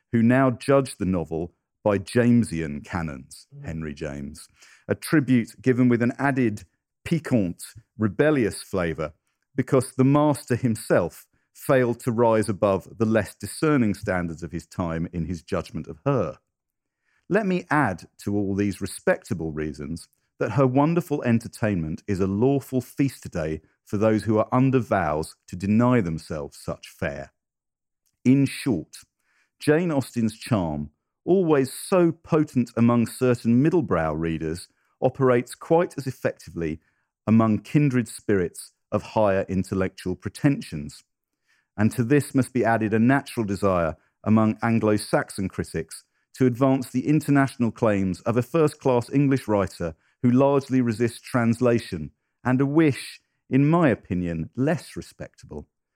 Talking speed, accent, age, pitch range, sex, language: 135 wpm, British, 50-69, 95-130 Hz, male, English